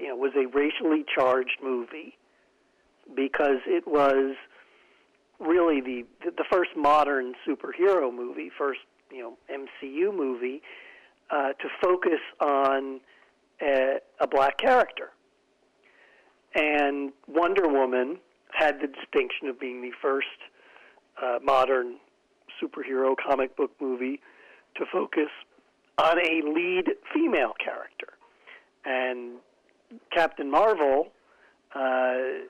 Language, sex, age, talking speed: English, male, 50-69, 105 wpm